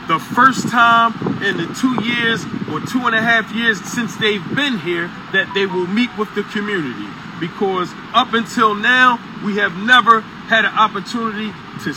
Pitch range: 195-235 Hz